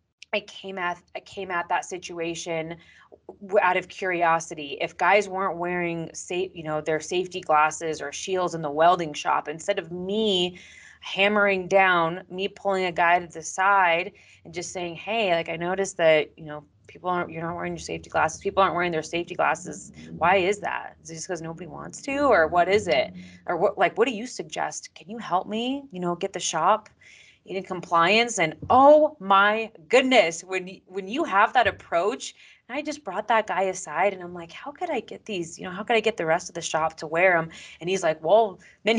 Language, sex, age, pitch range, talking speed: English, female, 20-39, 170-215 Hz, 210 wpm